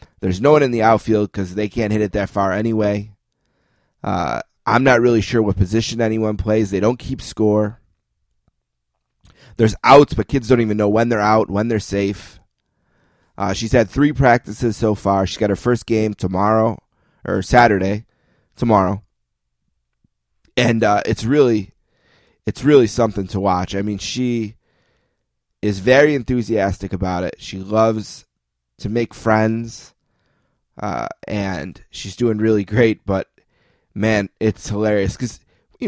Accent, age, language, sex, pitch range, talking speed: American, 20-39, English, male, 100-115 Hz, 150 wpm